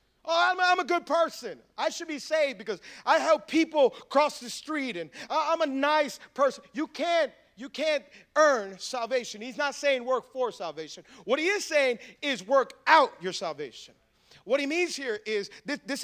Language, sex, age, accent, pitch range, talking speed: English, male, 40-59, American, 205-285 Hz, 185 wpm